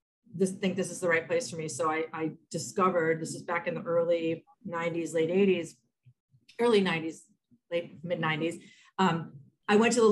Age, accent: 40-59, American